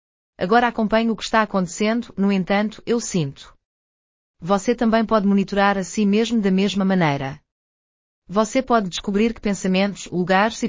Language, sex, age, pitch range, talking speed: Portuguese, female, 30-49, 175-220 Hz, 150 wpm